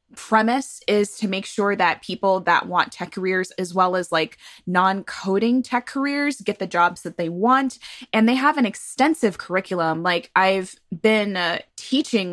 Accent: American